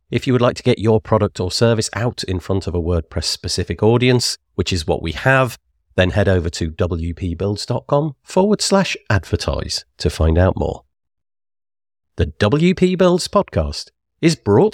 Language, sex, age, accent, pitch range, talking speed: English, male, 40-59, British, 85-140 Hz, 165 wpm